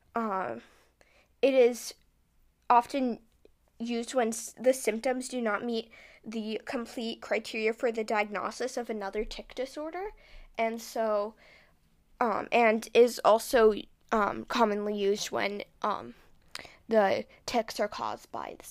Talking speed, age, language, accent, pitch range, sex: 120 wpm, 10-29, English, American, 215-255 Hz, female